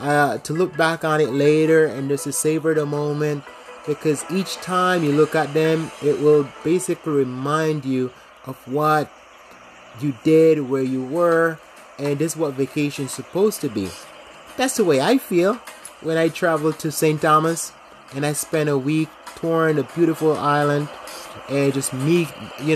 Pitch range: 135-160 Hz